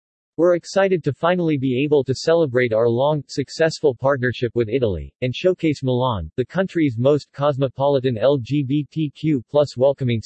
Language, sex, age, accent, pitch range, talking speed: English, male, 40-59, American, 120-150 Hz, 140 wpm